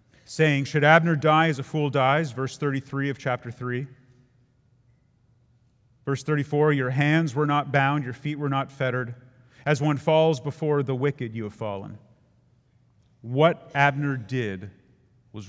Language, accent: English, American